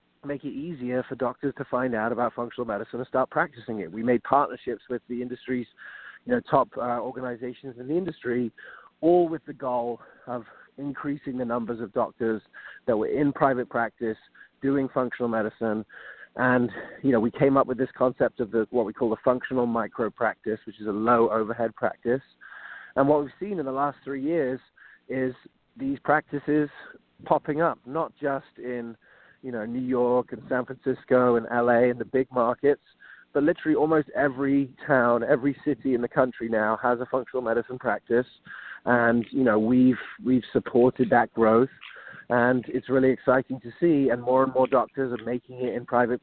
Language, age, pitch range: English, 30-49, 120-130 Hz